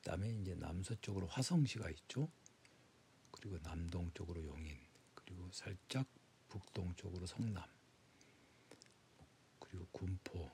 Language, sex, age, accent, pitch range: Korean, male, 60-79, native, 90-115 Hz